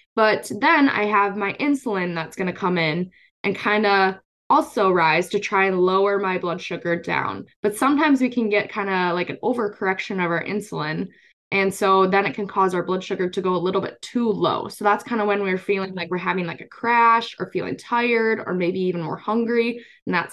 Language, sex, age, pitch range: English, female, 10-29, 185-225 Hz